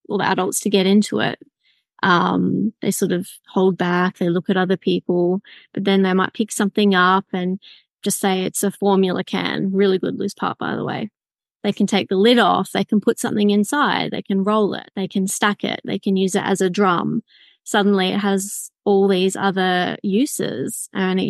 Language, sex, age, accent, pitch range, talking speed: English, female, 20-39, Australian, 190-215 Hz, 205 wpm